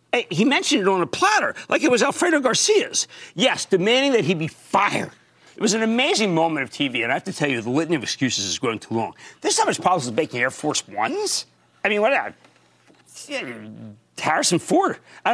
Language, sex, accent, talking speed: English, male, American, 220 wpm